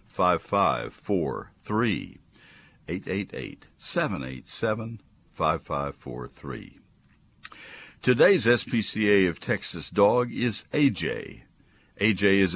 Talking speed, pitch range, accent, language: 110 wpm, 80-100 Hz, American, English